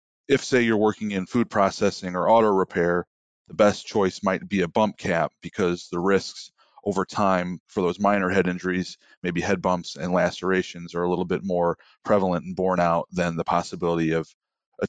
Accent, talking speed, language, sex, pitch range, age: American, 190 wpm, English, male, 85-95 Hz, 30-49